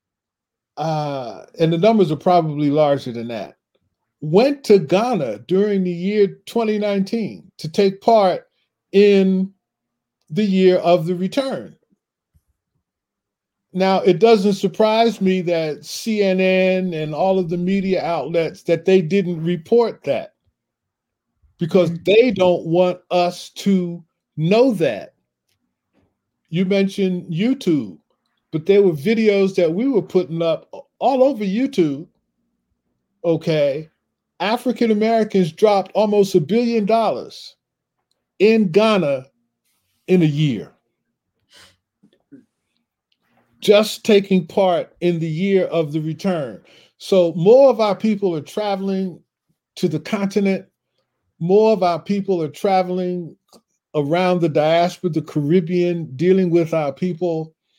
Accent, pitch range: American, 165-205 Hz